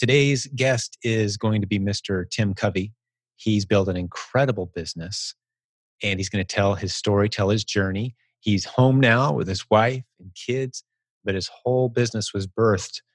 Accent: American